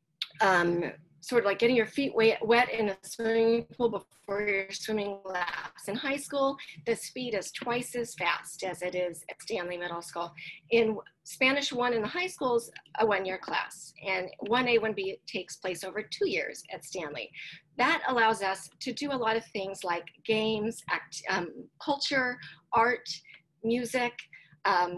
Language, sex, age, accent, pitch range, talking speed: English, female, 40-59, American, 180-230 Hz, 165 wpm